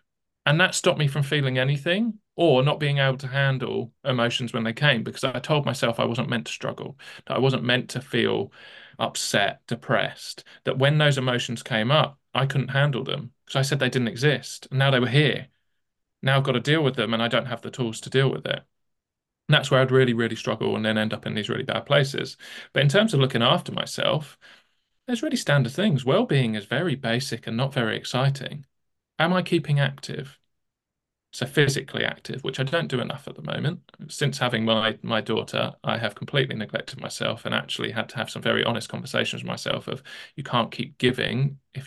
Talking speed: 215 wpm